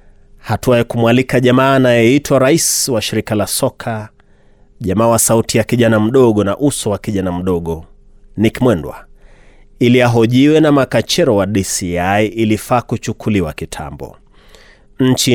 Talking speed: 130 wpm